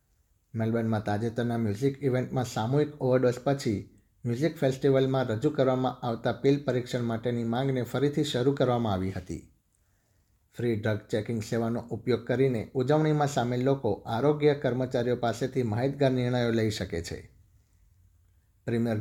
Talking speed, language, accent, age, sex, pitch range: 125 wpm, Gujarati, native, 50-69, male, 110-135 Hz